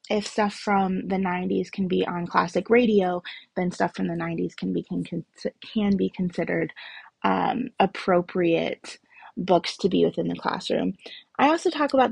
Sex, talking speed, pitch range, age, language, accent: female, 165 wpm, 175-215 Hz, 20-39, English, American